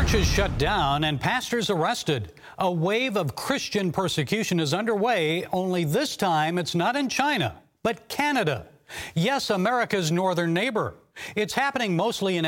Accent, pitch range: American, 160-215 Hz